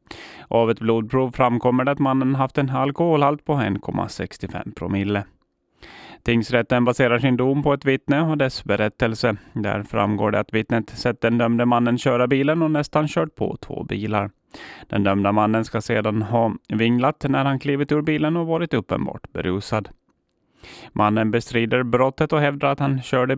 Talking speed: 165 wpm